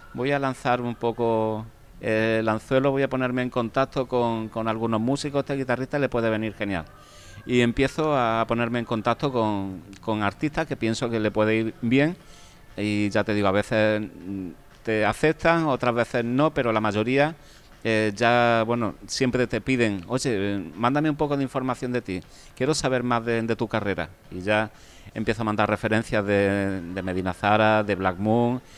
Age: 40-59